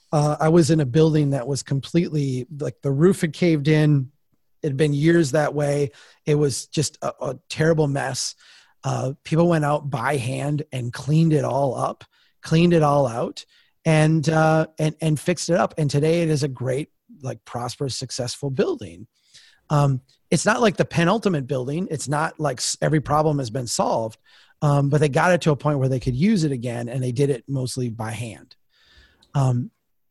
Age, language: 30-49, English